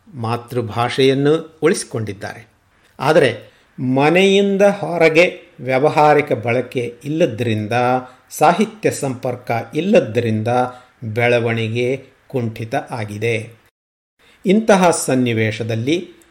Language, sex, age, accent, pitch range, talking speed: Kannada, male, 50-69, native, 115-145 Hz, 60 wpm